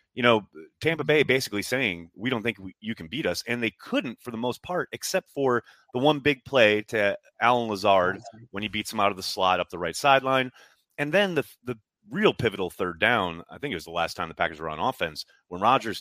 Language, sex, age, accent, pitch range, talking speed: English, male, 30-49, American, 110-160 Hz, 240 wpm